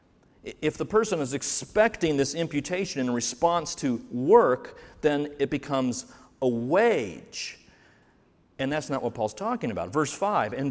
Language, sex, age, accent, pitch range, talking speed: English, male, 40-59, American, 120-165 Hz, 145 wpm